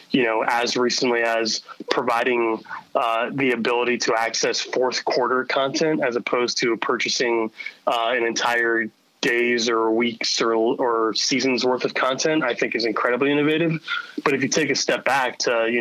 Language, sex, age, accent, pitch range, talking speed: English, male, 20-39, American, 115-130 Hz, 165 wpm